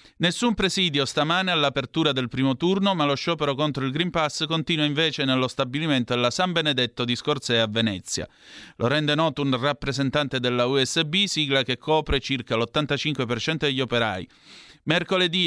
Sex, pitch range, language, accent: male, 120-160 Hz, Italian, native